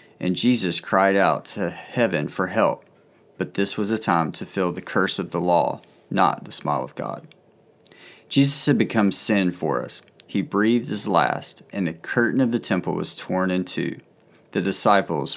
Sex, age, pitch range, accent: male, 30-49, 90-125 Hz, American